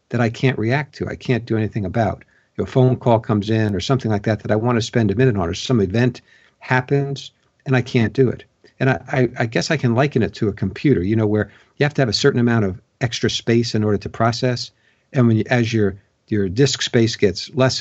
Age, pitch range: 50-69, 105-130 Hz